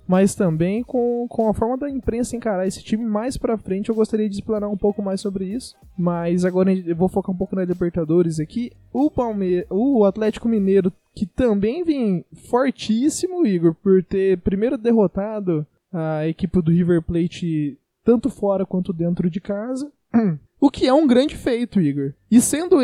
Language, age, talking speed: Portuguese, 20-39, 175 wpm